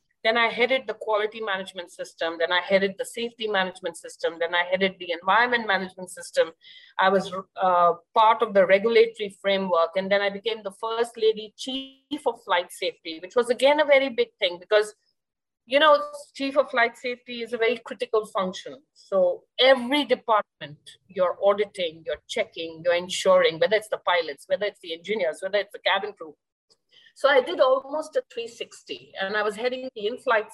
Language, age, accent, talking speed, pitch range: English, 50-69, Indian, 185 wpm, 190-260 Hz